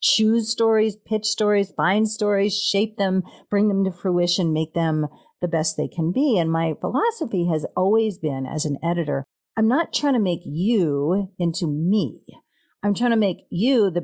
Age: 50-69